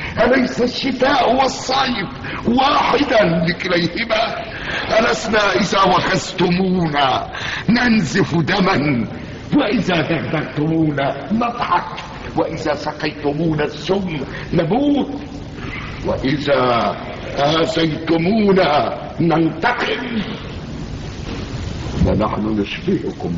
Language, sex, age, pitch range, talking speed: Arabic, male, 60-79, 155-205 Hz, 55 wpm